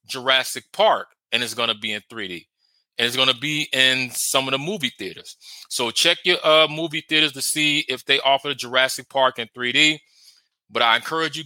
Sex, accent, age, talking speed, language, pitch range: male, American, 30-49, 200 wpm, English, 120-150 Hz